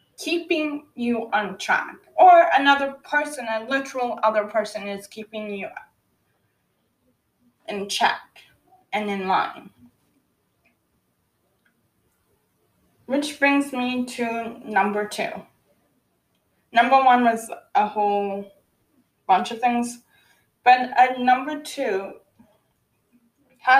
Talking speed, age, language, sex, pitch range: 95 wpm, 20-39, English, female, 210-265 Hz